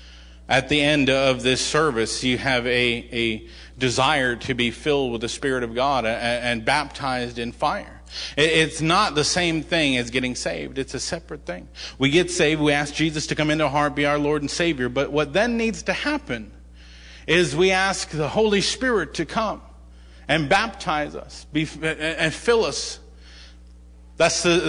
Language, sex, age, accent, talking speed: English, male, 40-59, American, 180 wpm